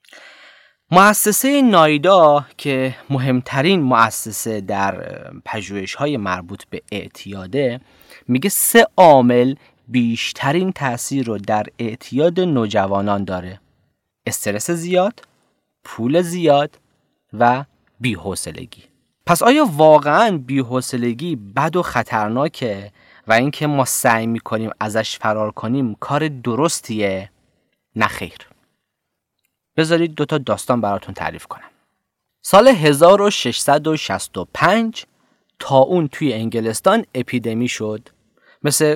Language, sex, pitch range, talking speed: Persian, male, 110-170 Hz, 90 wpm